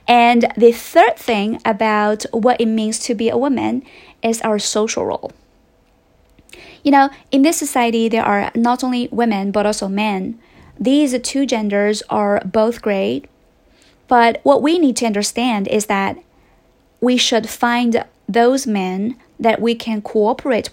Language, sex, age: Chinese, female, 30-49